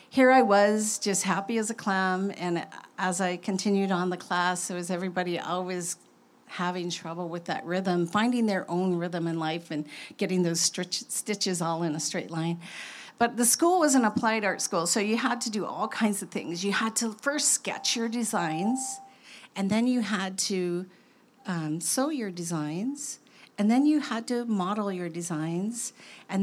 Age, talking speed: 50-69, 185 wpm